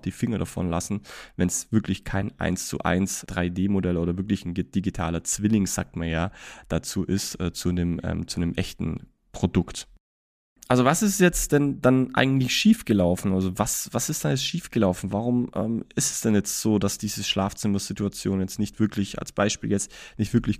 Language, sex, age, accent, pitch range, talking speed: German, male, 20-39, German, 95-120 Hz, 185 wpm